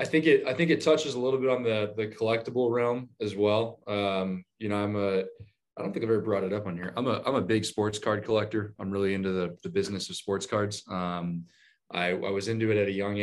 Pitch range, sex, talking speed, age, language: 95-115 Hz, male, 265 wpm, 20-39, English